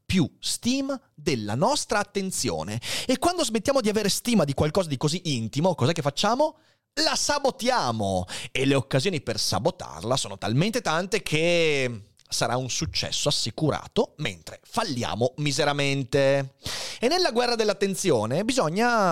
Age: 30-49